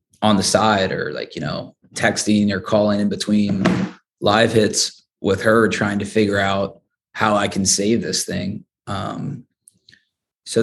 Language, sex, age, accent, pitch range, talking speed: English, male, 20-39, American, 105-115 Hz, 160 wpm